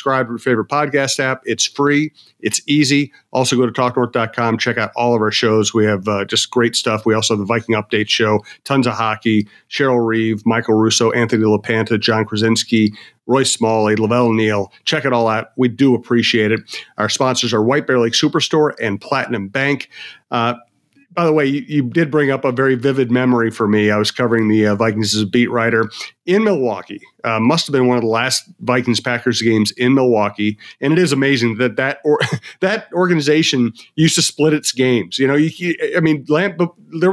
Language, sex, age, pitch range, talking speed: English, male, 40-59, 115-145 Hz, 205 wpm